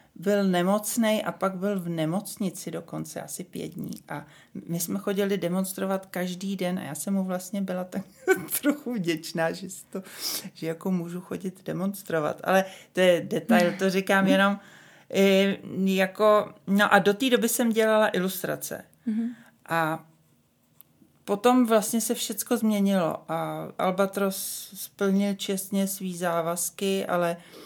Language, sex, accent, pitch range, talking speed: Czech, male, native, 170-195 Hz, 135 wpm